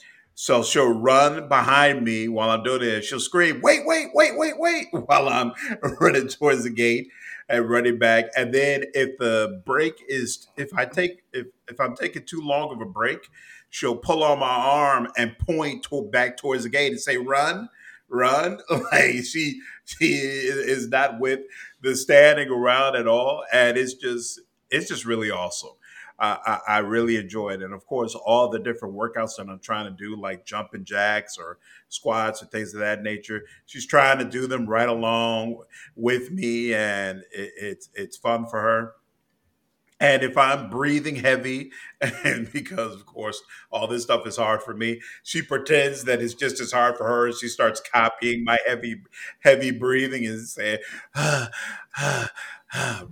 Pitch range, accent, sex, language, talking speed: 115-140 Hz, American, male, English, 175 wpm